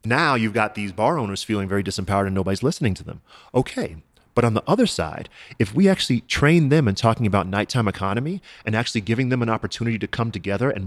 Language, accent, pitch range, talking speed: English, American, 100-130 Hz, 220 wpm